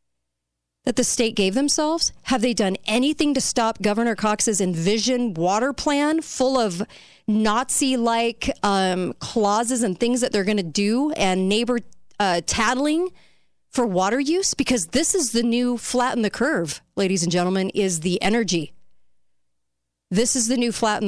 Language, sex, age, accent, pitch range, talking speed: English, female, 40-59, American, 165-235 Hz, 150 wpm